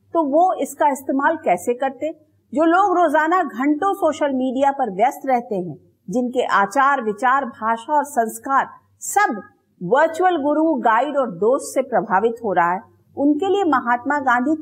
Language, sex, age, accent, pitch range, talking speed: English, female, 50-69, Indian, 230-320 Hz, 150 wpm